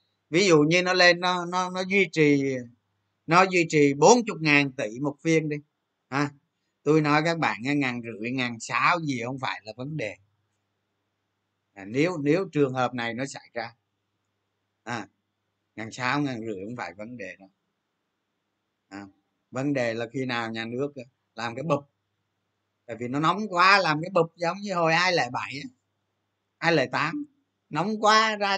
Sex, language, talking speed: male, Vietnamese, 180 wpm